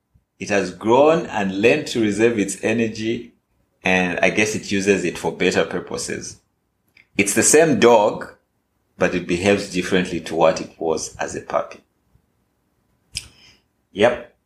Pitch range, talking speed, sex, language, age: 90-110 Hz, 140 wpm, male, English, 30-49